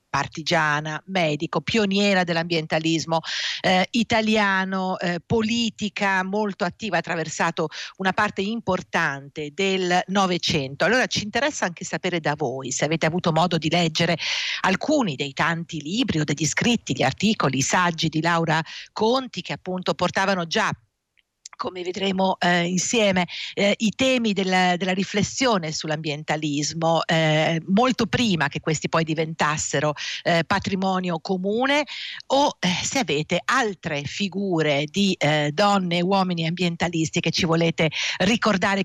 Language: Italian